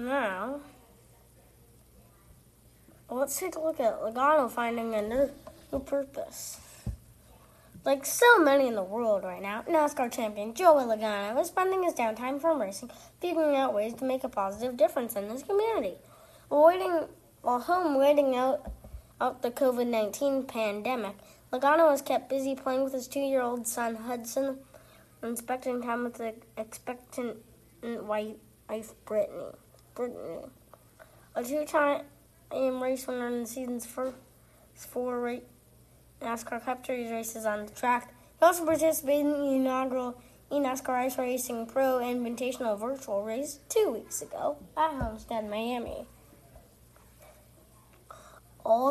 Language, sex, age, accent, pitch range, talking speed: English, female, 10-29, American, 235-285 Hz, 130 wpm